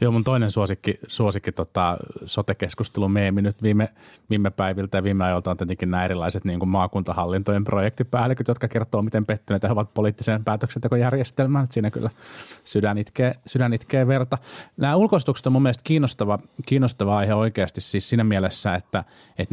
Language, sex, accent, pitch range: Finnish, male, native, 90-115 Hz